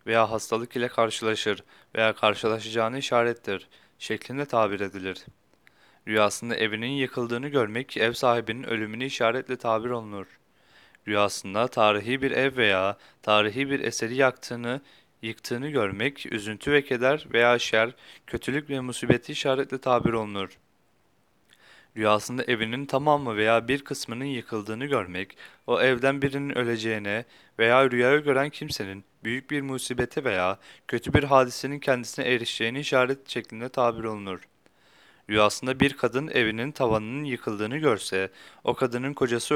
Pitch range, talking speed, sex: 110-135 Hz, 125 wpm, male